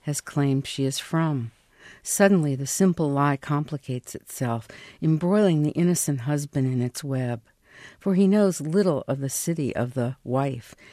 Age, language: 60-79, English